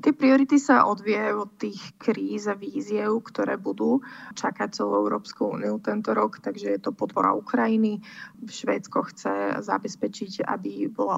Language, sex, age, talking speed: Slovak, female, 20-39, 145 wpm